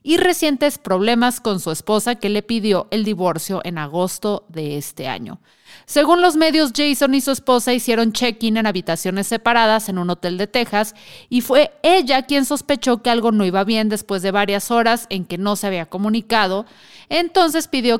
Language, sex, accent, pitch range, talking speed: Spanish, female, Mexican, 200-250 Hz, 185 wpm